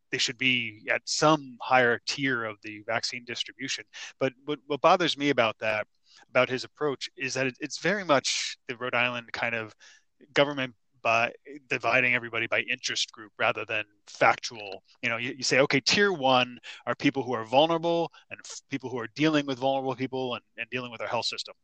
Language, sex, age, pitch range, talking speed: English, male, 20-39, 120-145 Hz, 190 wpm